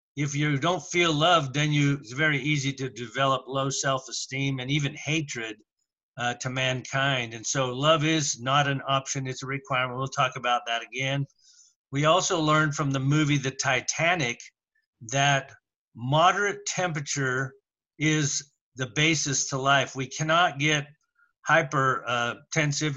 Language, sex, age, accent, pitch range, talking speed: English, male, 50-69, American, 130-150 Hz, 145 wpm